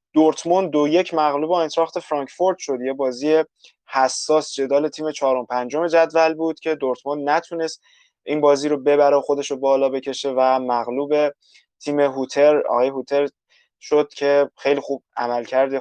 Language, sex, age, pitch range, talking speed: Persian, male, 20-39, 125-155 Hz, 150 wpm